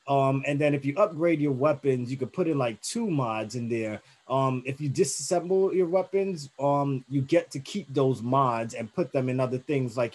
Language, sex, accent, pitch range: English, male, American, 125-145 Hz